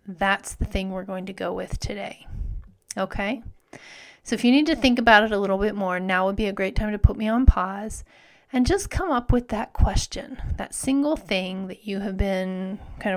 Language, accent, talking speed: English, American, 220 wpm